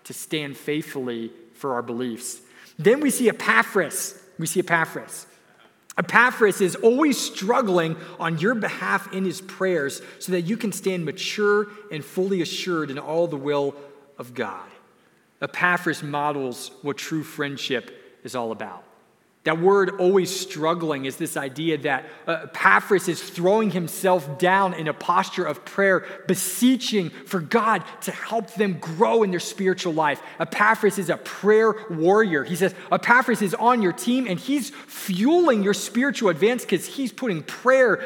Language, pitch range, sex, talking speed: English, 160-205 Hz, male, 150 wpm